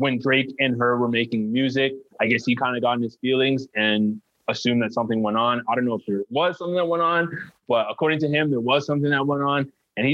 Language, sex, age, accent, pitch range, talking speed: English, male, 20-39, American, 115-150 Hz, 260 wpm